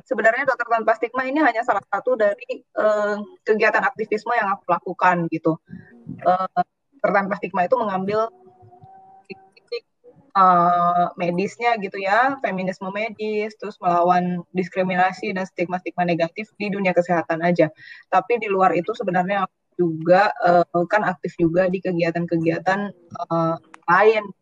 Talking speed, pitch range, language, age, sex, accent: 115 wpm, 175-230 Hz, Indonesian, 20-39, female, native